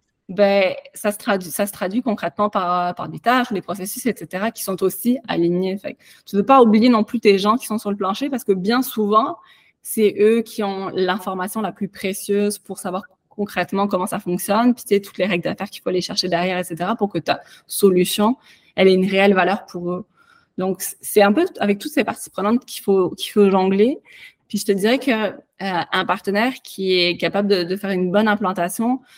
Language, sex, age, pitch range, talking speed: English, female, 20-39, 185-215 Hz, 215 wpm